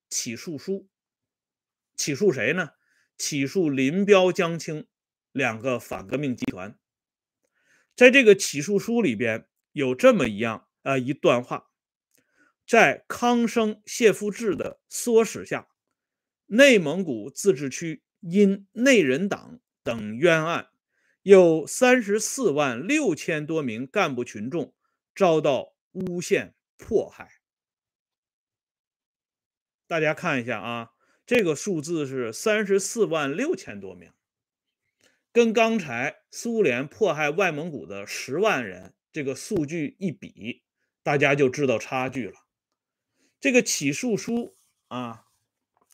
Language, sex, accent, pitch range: Swedish, male, Chinese, 145-225 Hz